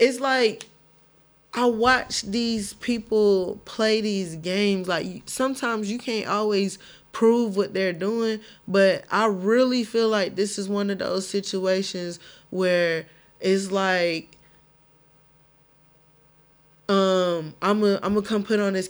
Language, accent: English, American